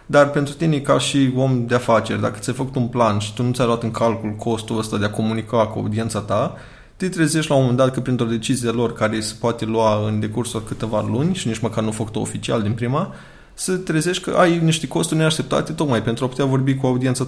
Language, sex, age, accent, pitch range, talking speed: Romanian, male, 20-39, native, 110-145 Hz, 240 wpm